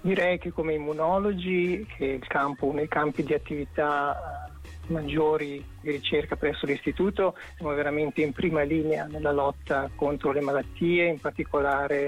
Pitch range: 145-160 Hz